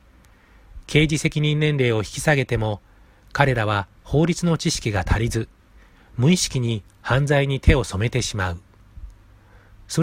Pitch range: 100-150 Hz